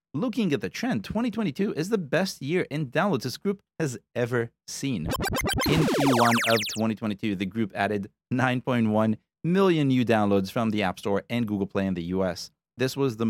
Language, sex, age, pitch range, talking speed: English, male, 30-49, 105-150 Hz, 180 wpm